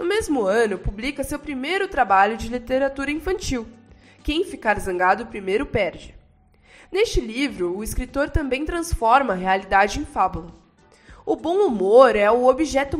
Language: Portuguese